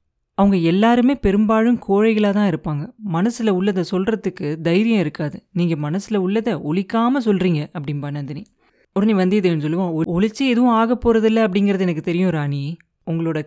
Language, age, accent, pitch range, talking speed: Tamil, 30-49, native, 175-220 Hz, 140 wpm